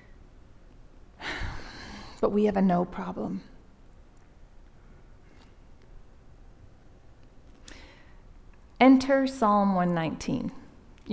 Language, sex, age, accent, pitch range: English, female, 40-59, American, 210-260 Hz